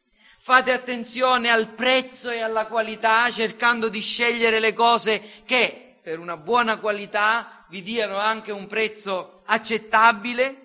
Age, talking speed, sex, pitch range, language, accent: 40-59, 130 wpm, male, 190-260 Hz, Italian, native